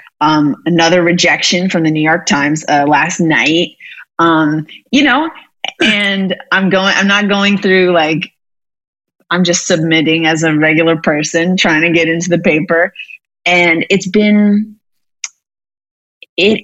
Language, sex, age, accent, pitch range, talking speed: English, female, 30-49, American, 150-180 Hz, 140 wpm